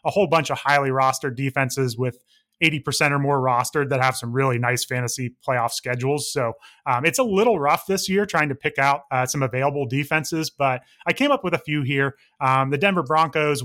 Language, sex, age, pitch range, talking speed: English, male, 30-49, 135-170 Hz, 210 wpm